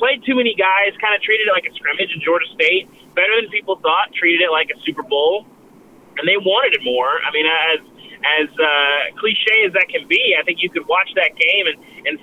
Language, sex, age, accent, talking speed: English, male, 30-49, American, 235 wpm